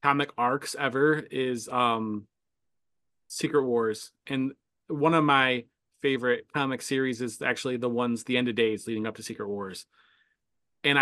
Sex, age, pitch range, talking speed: male, 30-49, 120-150 Hz, 150 wpm